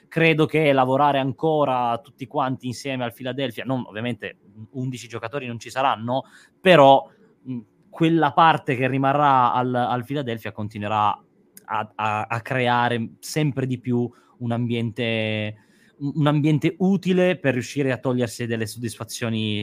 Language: Italian